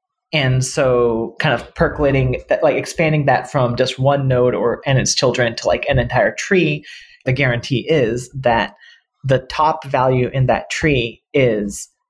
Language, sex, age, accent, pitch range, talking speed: English, male, 30-49, American, 125-160 Hz, 165 wpm